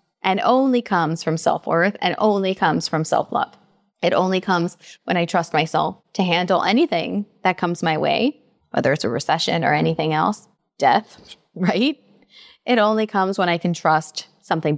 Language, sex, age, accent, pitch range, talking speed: English, female, 20-39, American, 165-210 Hz, 165 wpm